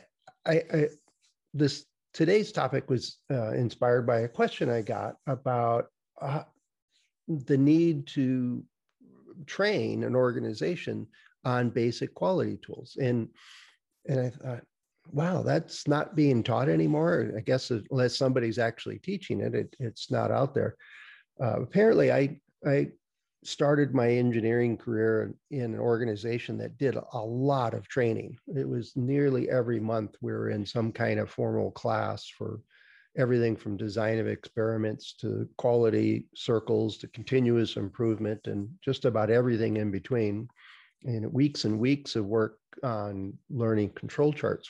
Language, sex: English, male